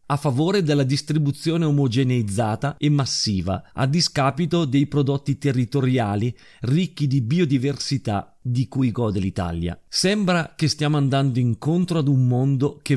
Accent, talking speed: native, 130 wpm